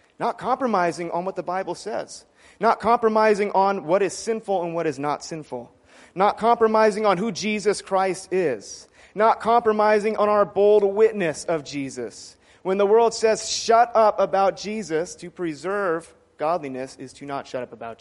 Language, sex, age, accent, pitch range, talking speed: English, male, 30-49, American, 145-215 Hz, 165 wpm